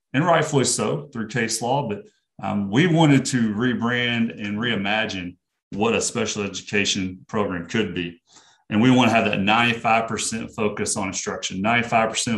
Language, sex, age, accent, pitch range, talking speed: English, male, 30-49, American, 105-125 Hz, 155 wpm